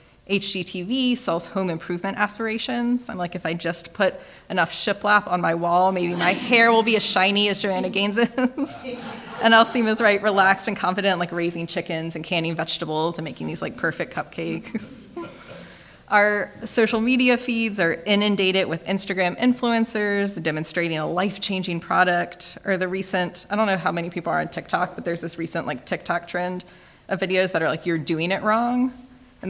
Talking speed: 180 wpm